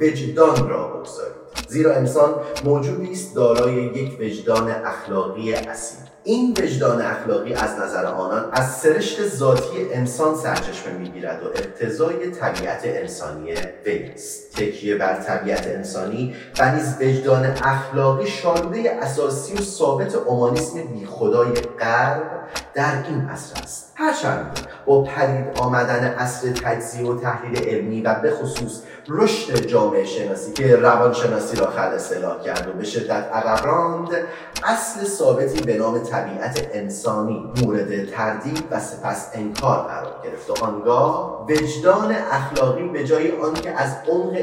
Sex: male